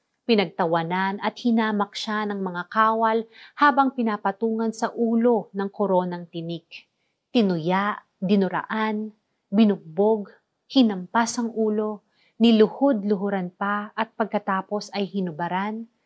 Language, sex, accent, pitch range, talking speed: Filipino, female, native, 180-225 Hz, 95 wpm